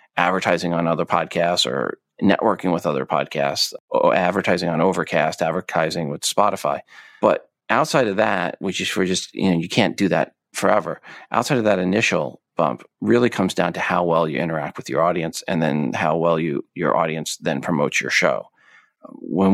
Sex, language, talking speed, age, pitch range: male, English, 180 wpm, 40-59, 85-105 Hz